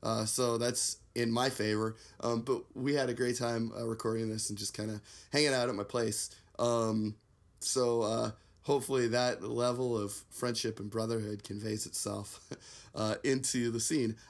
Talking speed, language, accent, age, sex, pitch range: 170 wpm, English, American, 30-49, male, 110-130 Hz